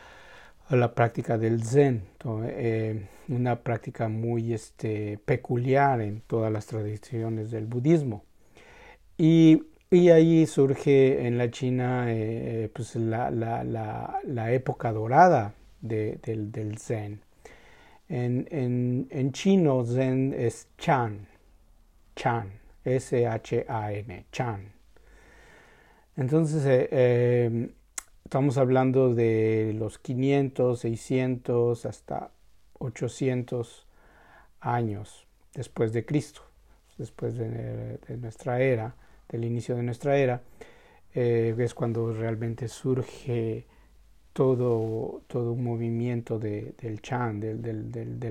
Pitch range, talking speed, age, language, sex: 110-130 Hz, 100 wpm, 50-69, Spanish, male